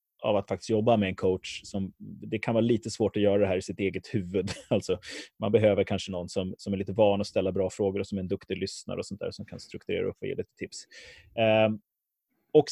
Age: 30-49